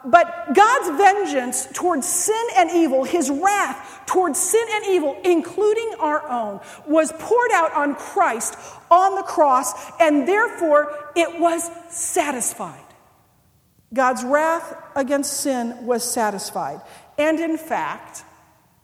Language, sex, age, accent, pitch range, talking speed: English, female, 40-59, American, 210-295 Hz, 120 wpm